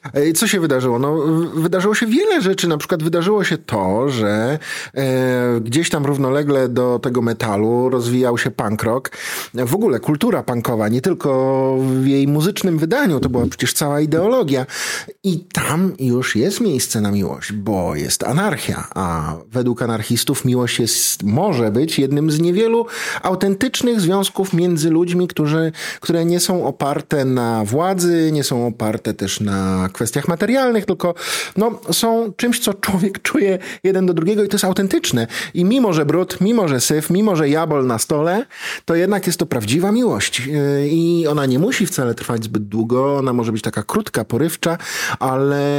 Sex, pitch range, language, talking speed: male, 120-175 Hz, Polish, 160 wpm